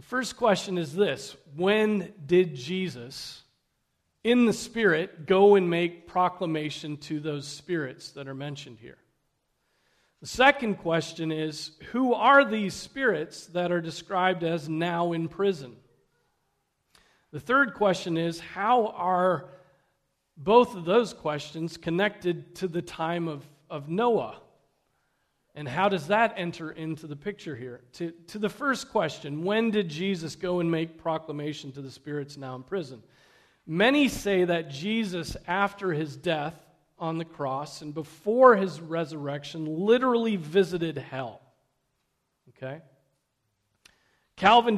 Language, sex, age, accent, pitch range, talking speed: English, male, 40-59, American, 150-200 Hz, 135 wpm